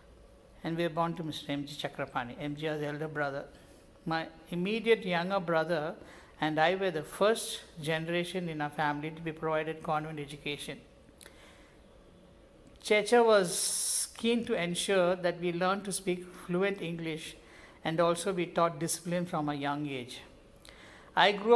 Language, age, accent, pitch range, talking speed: Telugu, 50-69, native, 155-185 Hz, 155 wpm